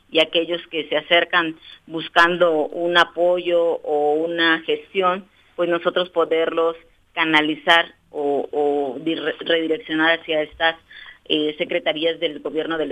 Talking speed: 120 wpm